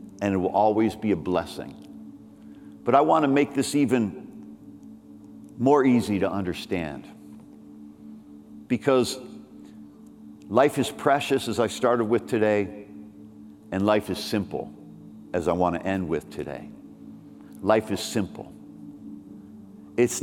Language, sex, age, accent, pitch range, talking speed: English, male, 50-69, American, 75-110 Hz, 125 wpm